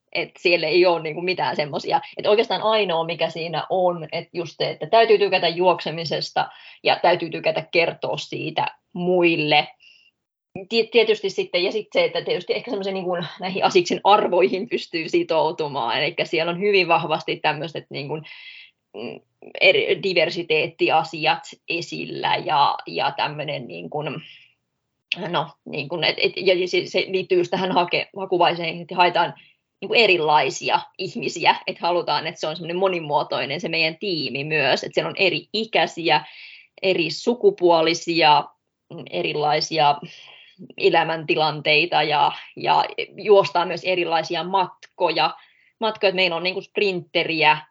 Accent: native